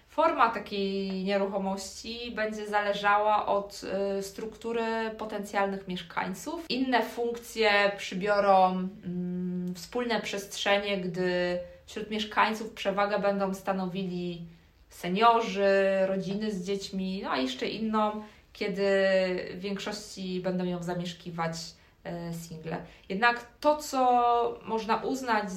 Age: 20-39